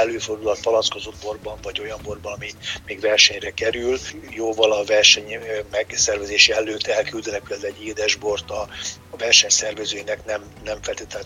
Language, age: Hungarian, 60-79